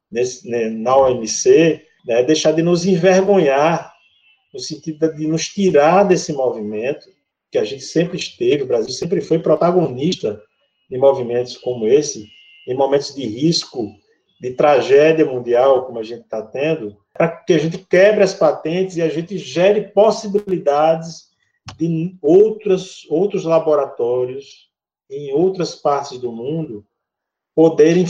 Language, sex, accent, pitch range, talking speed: Portuguese, male, Brazilian, 140-195 Hz, 135 wpm